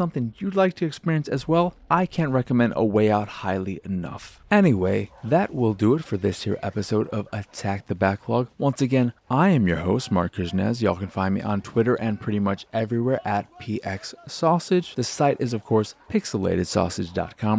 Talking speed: 190 wpm